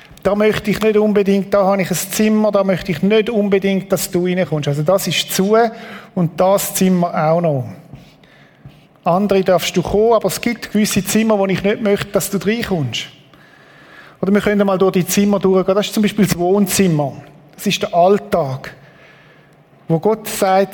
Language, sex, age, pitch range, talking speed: German, male, 50-69, 170-205 Hz, 185 wpm